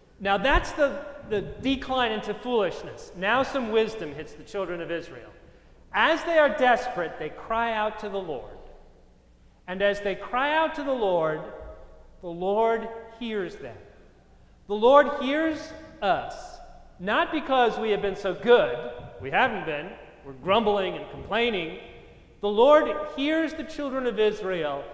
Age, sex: 40-59, male